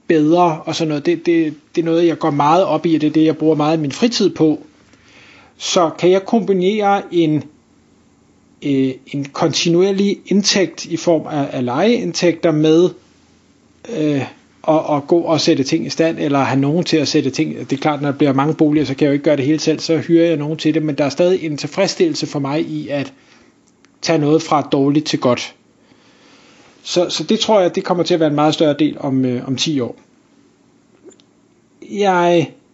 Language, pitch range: Danish, 155-180 Hz